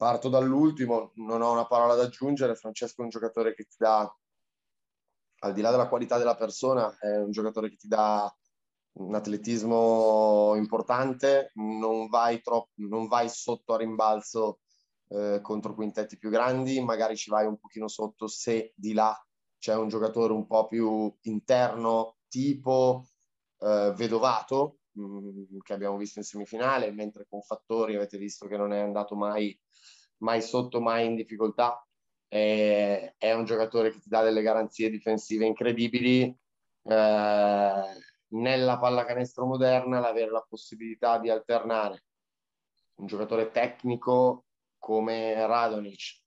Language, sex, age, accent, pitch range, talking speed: Italian, male, 20-39, native, 105-120 Hz, 140 wpm